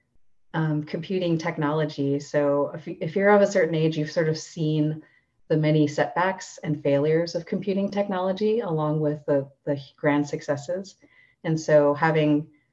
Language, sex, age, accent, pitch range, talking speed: English, female, 30-49, American, 150-185 Hz, 150 wpm